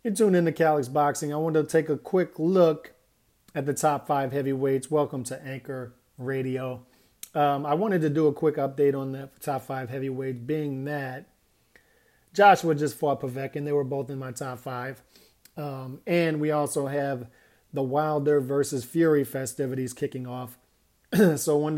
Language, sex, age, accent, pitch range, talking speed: English, male, 40-59, American, 130-155 Hz, 175 wpm